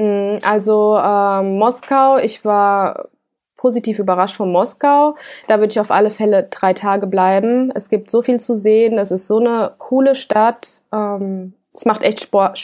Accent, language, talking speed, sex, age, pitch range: German, German, 165 wpm, female, 20-39, 195-240 Hz